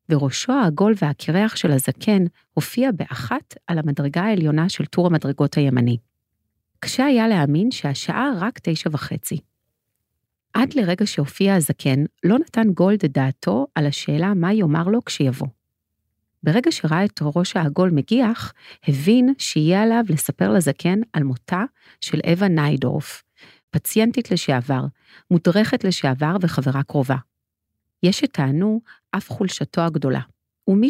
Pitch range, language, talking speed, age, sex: 140-195 Hz, Hebrew, 120 wpm, 40-59, female